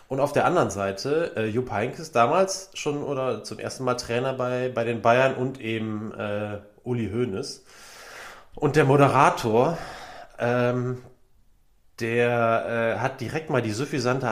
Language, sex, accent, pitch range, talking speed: German, male, German, 110-130 Hz, 145 wpm